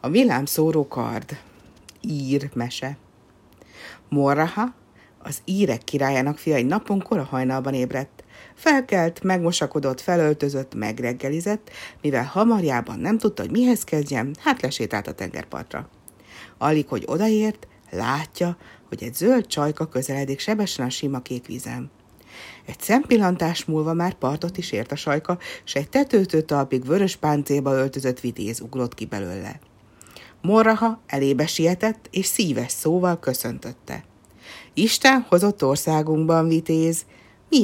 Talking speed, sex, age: 125 wpm, female, 60-79